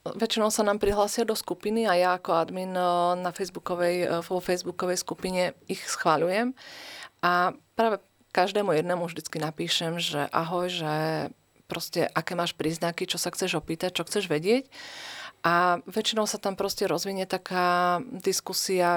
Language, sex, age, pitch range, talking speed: Slovak, female, 40-59, 170-185 Hz, 140 wpm